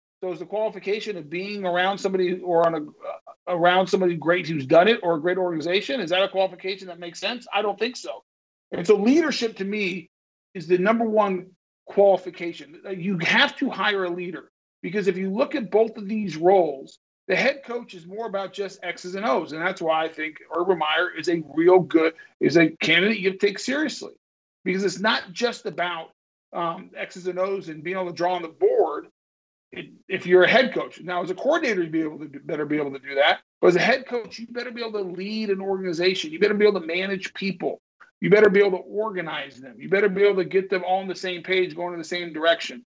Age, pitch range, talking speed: 50-69, 175-210 Hz, 230 wpm